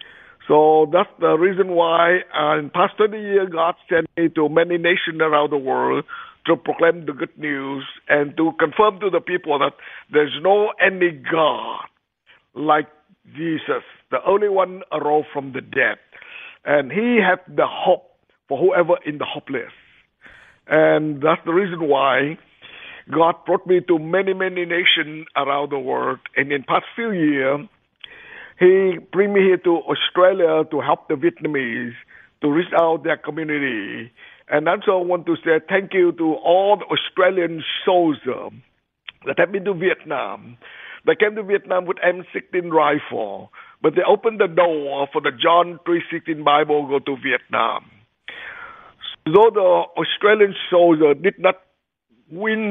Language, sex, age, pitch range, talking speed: English, male, 50-69, 150-185 Hz, 155 wpm